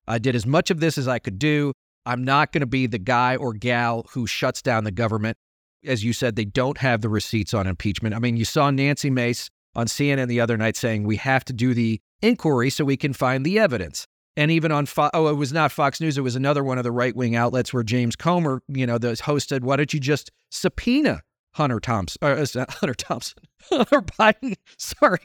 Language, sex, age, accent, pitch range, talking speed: English, male, 40-59, American, 120-165 Hz, 230 wpm